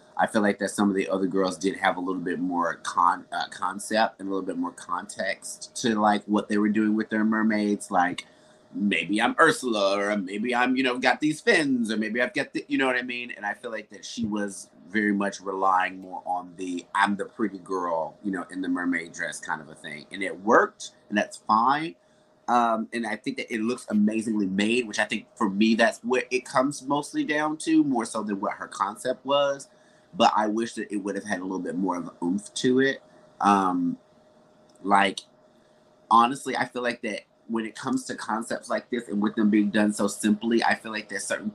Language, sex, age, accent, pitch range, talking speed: English, male, 30-49, American, 100-120 Hz, 230 wpm